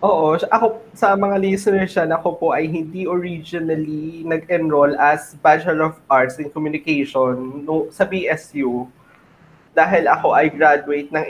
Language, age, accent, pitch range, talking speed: Filipino, 20-39, native, 145-175 Hz, 140 wpm